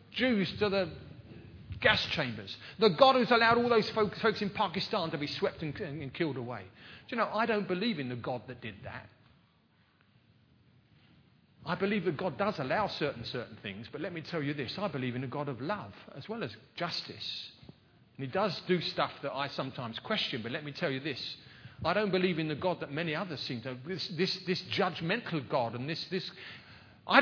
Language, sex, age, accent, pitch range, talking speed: English, male, 40-59, British, 135-210 Hz, 210 wpm